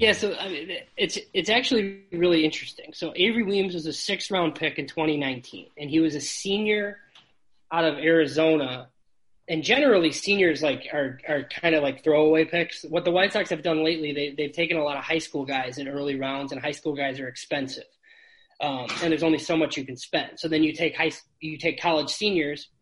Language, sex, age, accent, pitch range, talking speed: English, male, 20-39, American, 140-175 Hz, 215 wpm